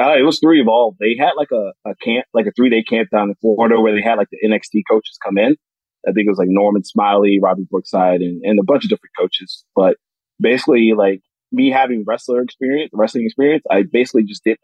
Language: English